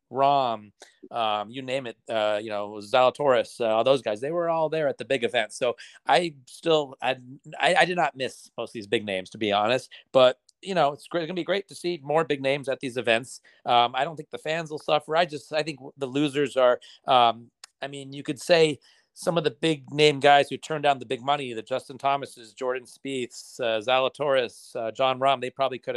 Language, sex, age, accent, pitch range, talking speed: English, male, 40-59, American, 115-145 Hz, 225 wpm